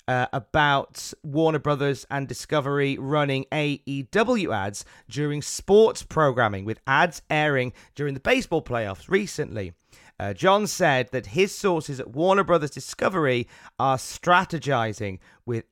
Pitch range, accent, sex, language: 110-155 Hz, British, male, English